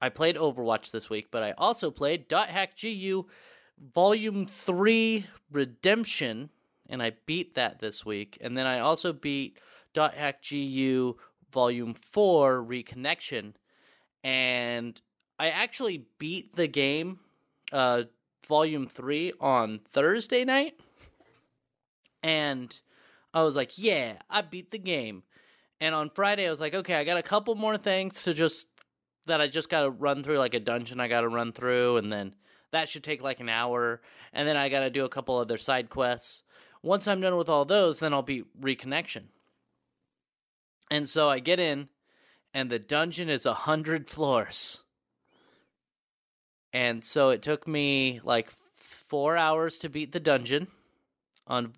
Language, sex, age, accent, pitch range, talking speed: English, male, 30-49, American, 125-165 Hz, 160 wpm